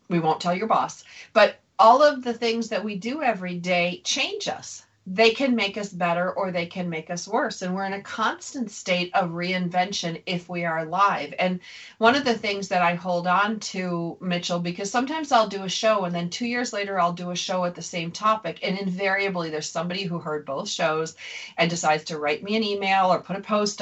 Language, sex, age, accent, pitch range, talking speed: English, female, 40-59, American, 175-225 Hz, 225 wpm